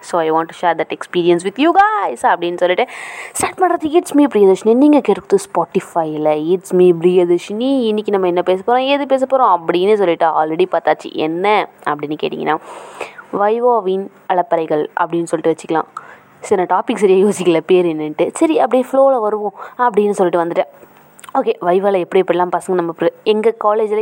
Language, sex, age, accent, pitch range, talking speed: Tamil, female, 20-39, native, 170-220 Hz, 155 wpm